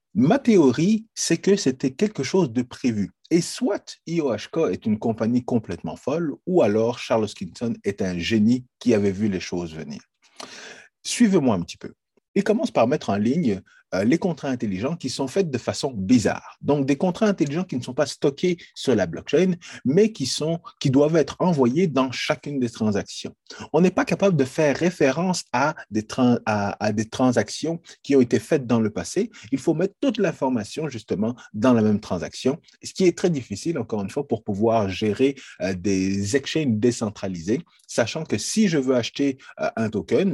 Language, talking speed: French, 190 wpm